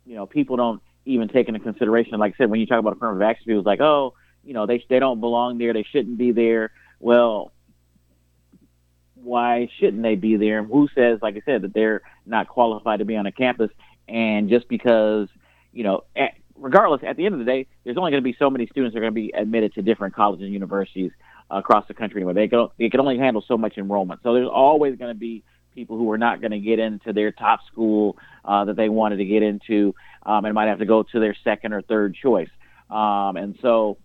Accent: American